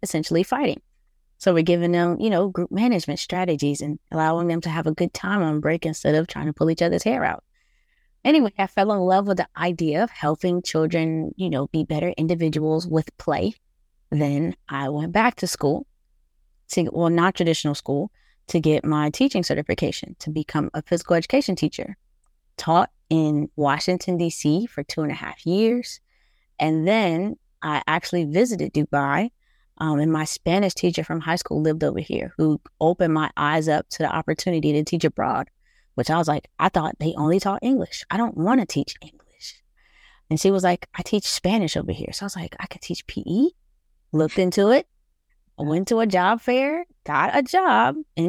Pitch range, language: 155-195 Hz, English